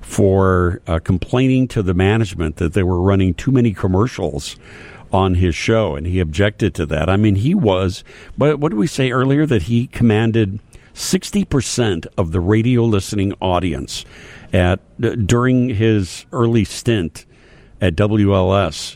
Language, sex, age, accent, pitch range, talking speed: English, male, 60-79, American, 90-125 Hz, 150 wpm